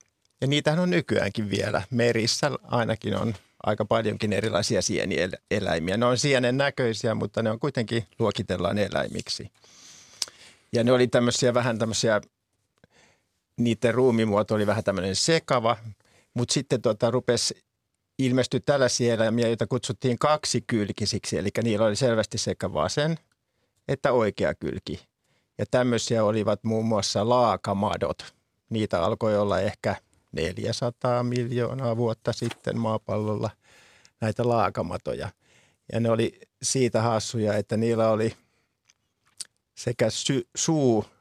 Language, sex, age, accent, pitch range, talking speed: Finnish, male, 50-69, native, 105-120 Hz, 120 wpm